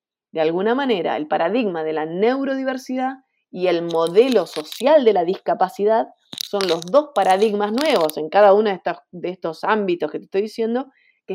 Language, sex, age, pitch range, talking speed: Spanish, female, 30-49, 175-245 Hz, 170 wpm